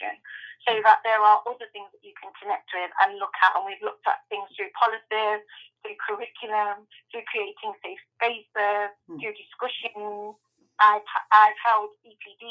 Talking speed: 160 wpm